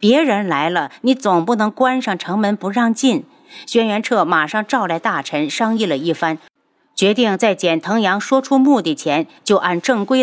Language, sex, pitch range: Chinese, female, 175-255 Hz